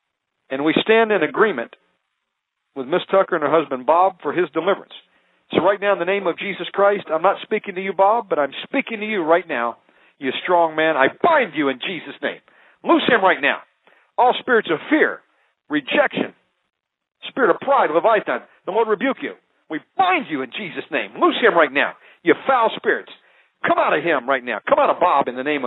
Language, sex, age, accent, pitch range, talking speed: English, male, 50-69, American, 160-225 Hz, 210 wpm